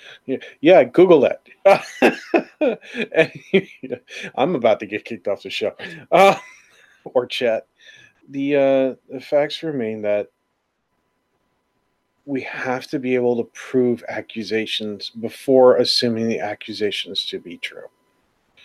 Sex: male